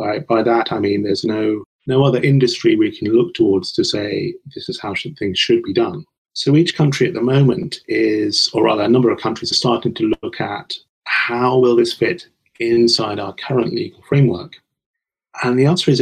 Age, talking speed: 30-49, 205 wpm